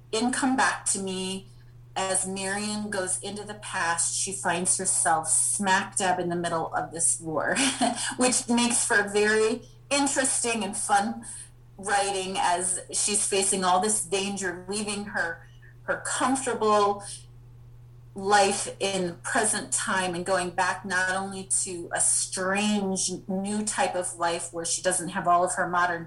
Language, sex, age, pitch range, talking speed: English, female, 30-49, 155-195 Hz, 150 wpm